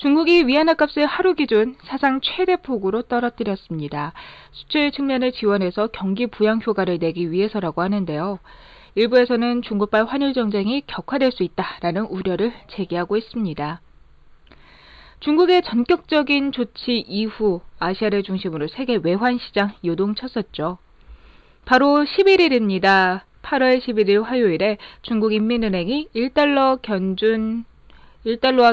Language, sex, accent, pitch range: Korean, female, native, 190-270 Hz